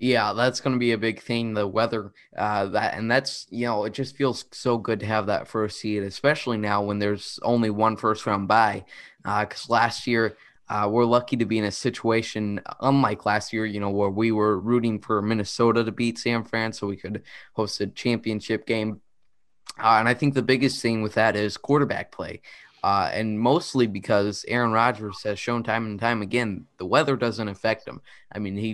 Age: 20-39